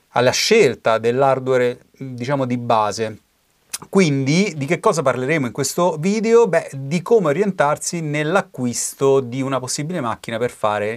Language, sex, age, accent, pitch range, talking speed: Italian, male, 30-49, native, 115-145 Hz, 135 wpm